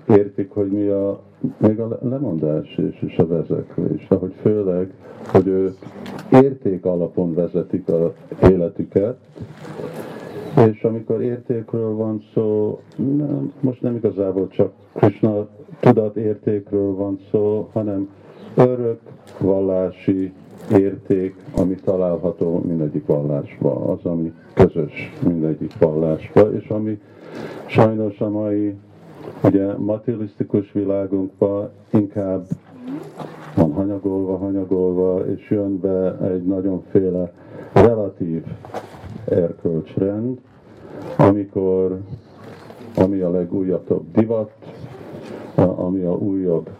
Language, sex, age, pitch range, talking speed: Hungarian, male, 50-69, 95-110 Hz, 95 wpm